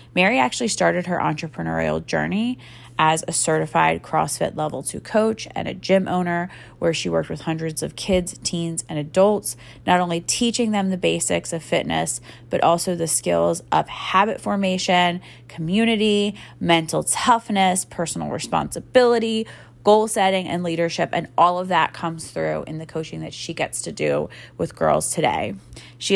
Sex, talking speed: female, 160 wpm